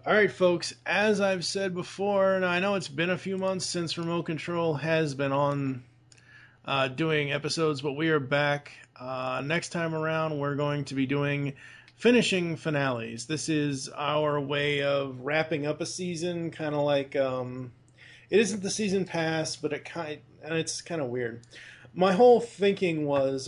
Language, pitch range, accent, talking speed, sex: English, 135-165 Hz, American, 175 wpm, male